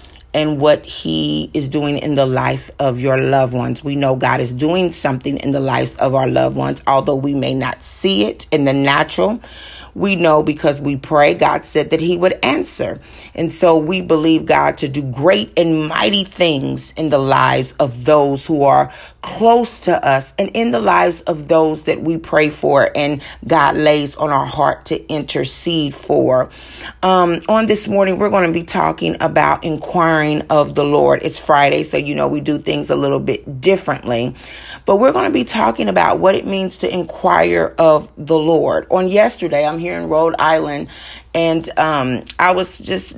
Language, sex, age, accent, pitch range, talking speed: English, female, 40-59, American, 135-175 Hz, 190 wpm